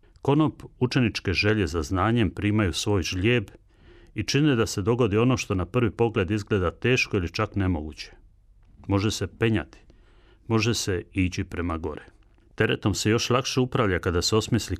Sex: male